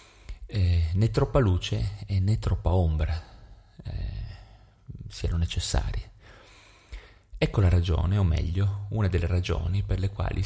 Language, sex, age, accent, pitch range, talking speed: Italian, male, 30-49, native, 85-100 Hz, 120 wpm